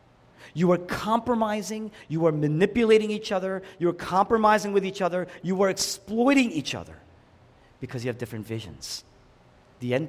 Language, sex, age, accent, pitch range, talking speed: English, male, 40-59, American, 105-175 Hz, 155 wpm